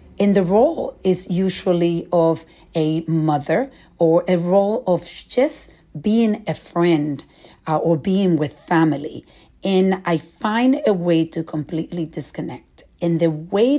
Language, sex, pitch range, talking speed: English, female, 155-190 Hz, 140 wpm